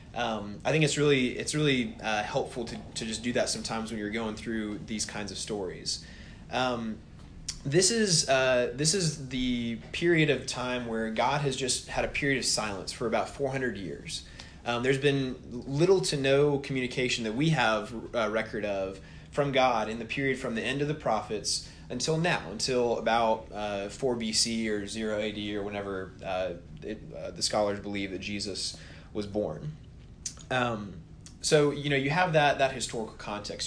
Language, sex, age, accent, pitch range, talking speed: English, male, 20-39, American, 110-140 Hz, 180 wpm